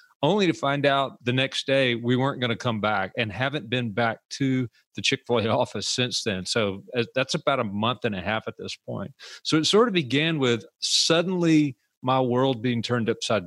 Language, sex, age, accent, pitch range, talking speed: English, male, 40-59, American, 115-145 Hz, 205 wpm